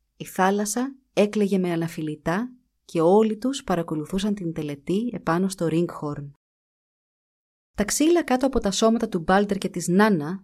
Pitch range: 165-205 Hz